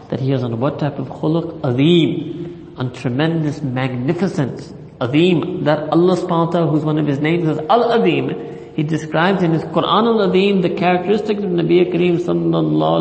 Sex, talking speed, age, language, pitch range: male, 185 wpm, 50-69, English, 135-170 Hz